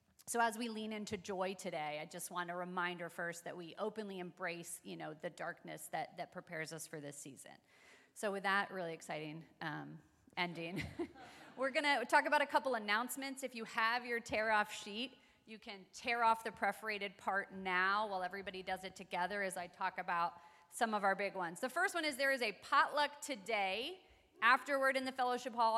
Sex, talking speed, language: female, 200 wpm, English